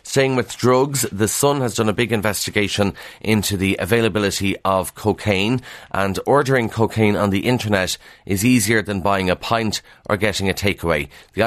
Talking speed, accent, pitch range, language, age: 170 wpm, Irish, 95-115 Hz, English, 30-49